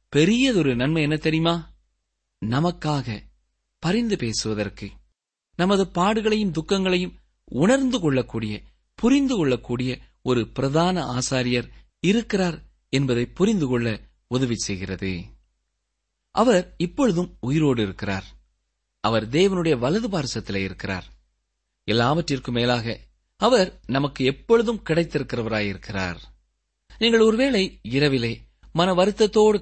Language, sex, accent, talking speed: Tamil, male, native, 85 wpm